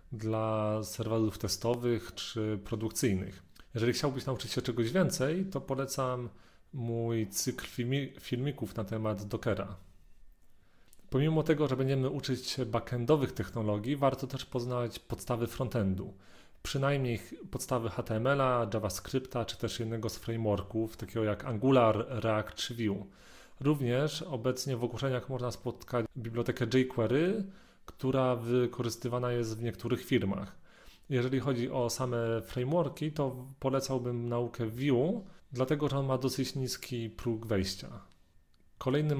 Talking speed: 120 wpm